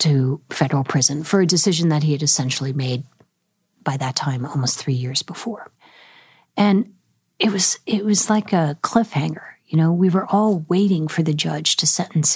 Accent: American